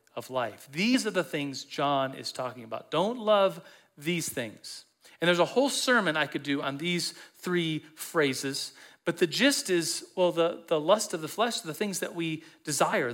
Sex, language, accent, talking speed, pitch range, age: male, English, American, 190 wpm, 135-175 Hz, 40-59